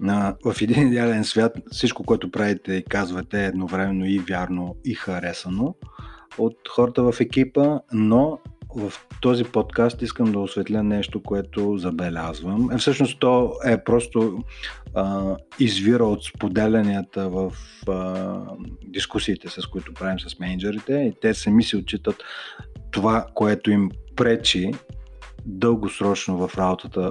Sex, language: male, Bulgarian